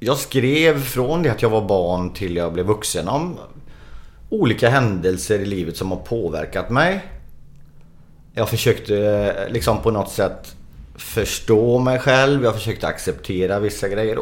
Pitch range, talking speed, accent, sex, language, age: 100-135 Hz, 150 wpm, native, male, Swedish, 30-49